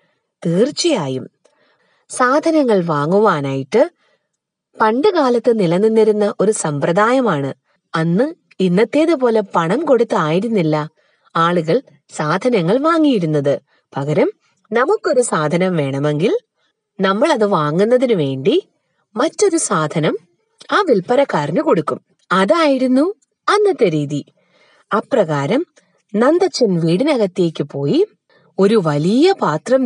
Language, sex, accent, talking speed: Malayalam, female, native, 75 wpm